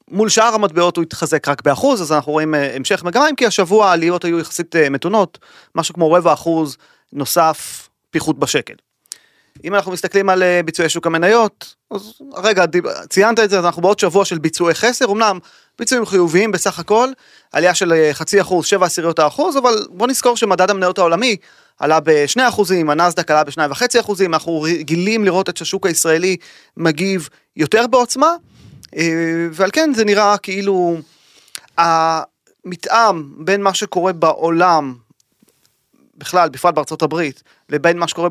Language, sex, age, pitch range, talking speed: Hebrew, male, 30-49, 165-205 Hz, 145 wpm